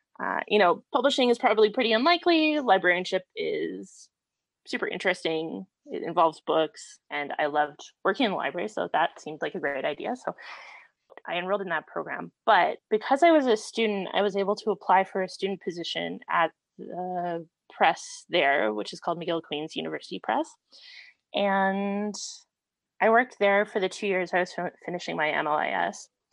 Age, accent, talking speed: 20-39, American, 165 wpm